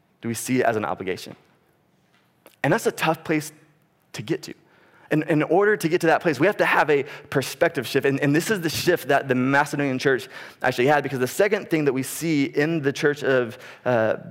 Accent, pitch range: American, 140-180 Hz